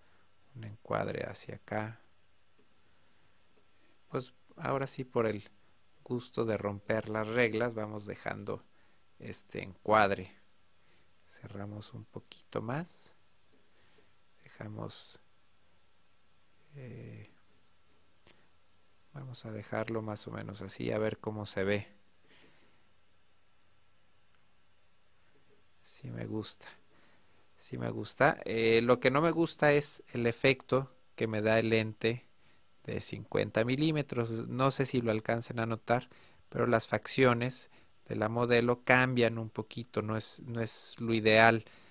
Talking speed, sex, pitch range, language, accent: 115 wpm, male, 100-120 Hz, Spanish, Mexican